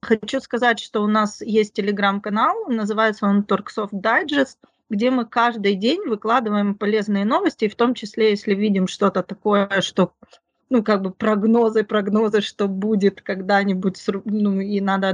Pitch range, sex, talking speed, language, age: 195-235 Hz, female, 150 wpm, Ukrainian, 30-49